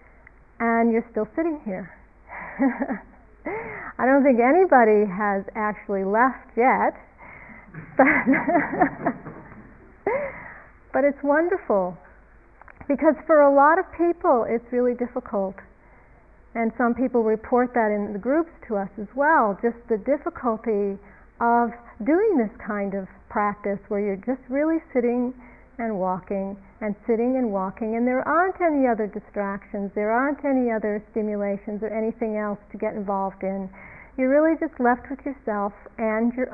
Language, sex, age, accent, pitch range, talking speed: English, female, 50-69, American, 210-270 Hz, 140 wpm